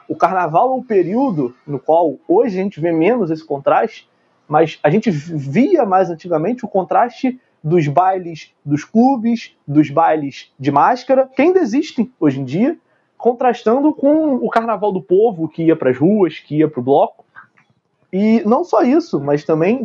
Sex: male